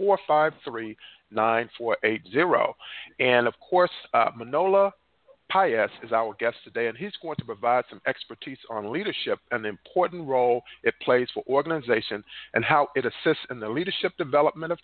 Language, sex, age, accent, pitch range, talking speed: English, male, 50-69, American, 125-180 Hz, 175 wpm